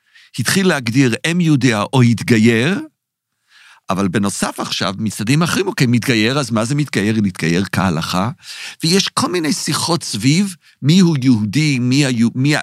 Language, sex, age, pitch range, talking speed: Hebrew, male, 50-69, 110-150 Hz, 140 wpm